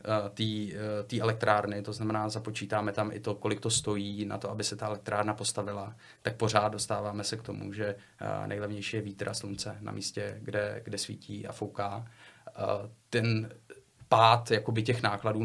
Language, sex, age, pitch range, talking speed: Czech, male, 30-49, 105-110 Hz, 165 wpm